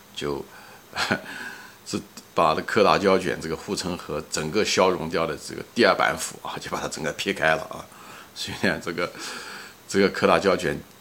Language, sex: Chinese, male